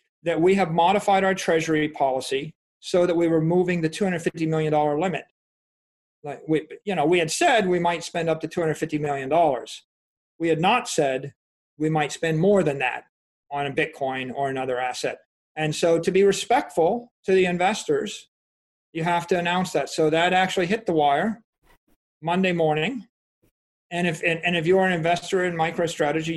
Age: 40-59